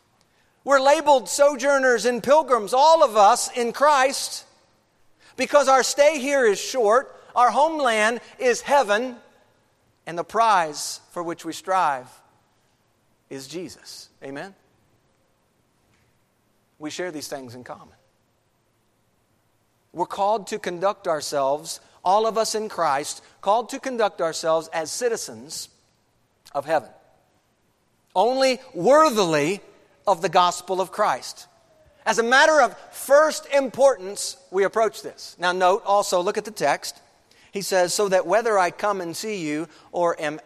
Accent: American